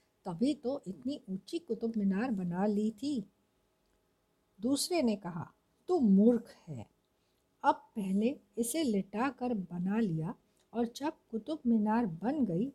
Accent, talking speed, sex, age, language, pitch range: native, 125 wpm, female, 60-79, Hindi, 205-265 Hz